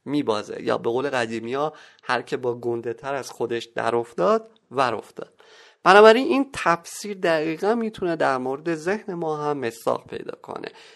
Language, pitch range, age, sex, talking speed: Persian, 120-170 Hz, 30-49, male, 160 wpm